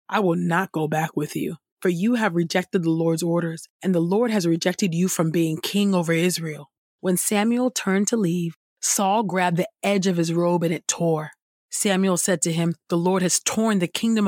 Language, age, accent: English, 30-49, American